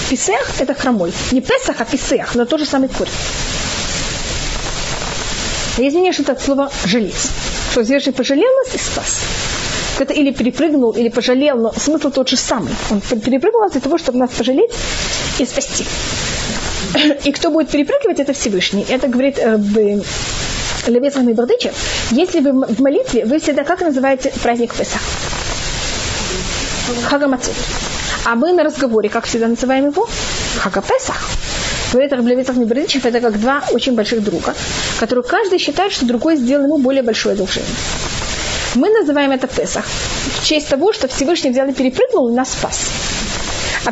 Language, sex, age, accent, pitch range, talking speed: Russian, female, 30-49, native, 245-300 Hz, 155 wpm